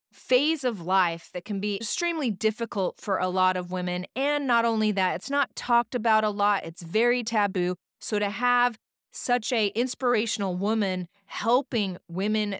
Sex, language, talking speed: female, English, 165 wpm